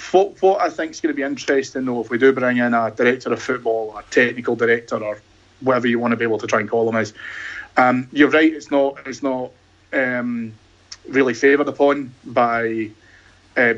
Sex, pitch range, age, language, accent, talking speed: male, 115-135 Hz, 30-49, English, British, 215 wpm